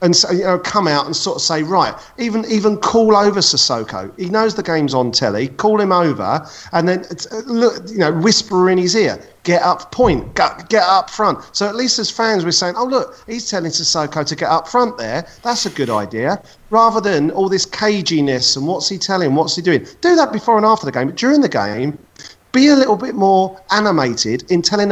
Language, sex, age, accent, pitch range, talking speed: English, male, 40-59, British, 135-210 Hz, 220 wpm